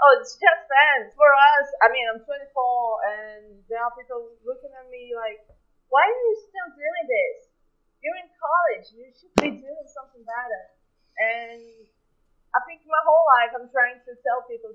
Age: 20-39